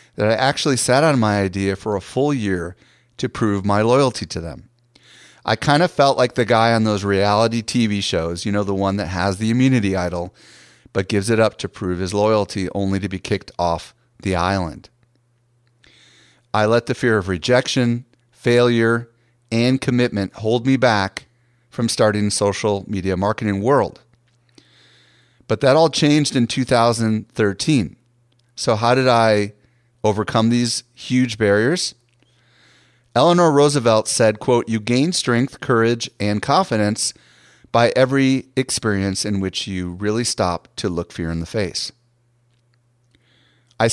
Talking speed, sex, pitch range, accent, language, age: 150 wpm, male, 100-125 Hz, American, English, 30-49